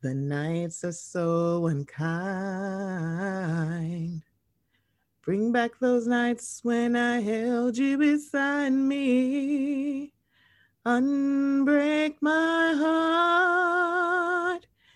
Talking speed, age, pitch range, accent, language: 70 wpm, 30-49, 225-325 Hz, American, English